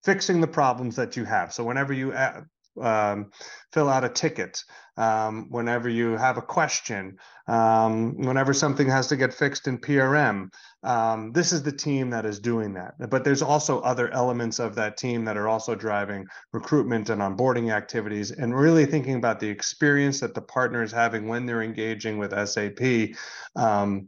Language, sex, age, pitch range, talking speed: English, male, 30-49, 110-135 Hz, 175 wpm